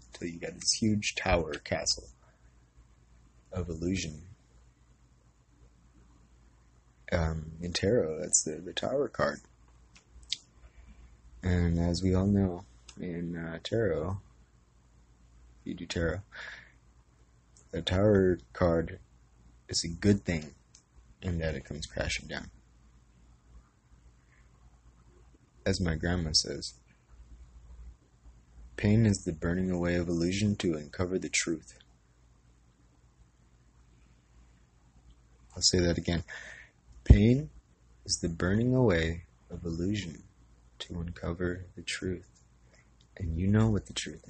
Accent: American